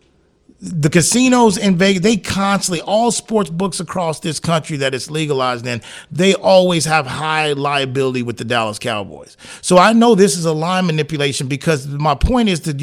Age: 40-59